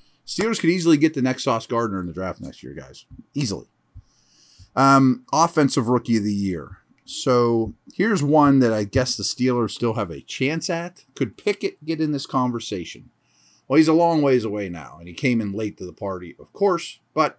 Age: 30-49